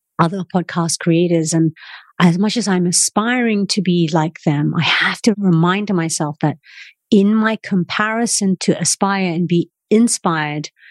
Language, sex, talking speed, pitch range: English, female, 150 wpm, 160-185 Hz